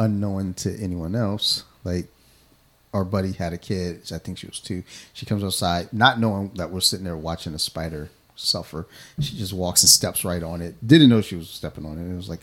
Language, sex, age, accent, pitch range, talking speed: English, male, 30-49, American, 90-110 Hz, 220 wpm